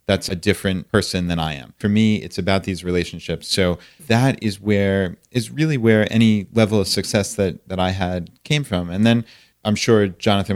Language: English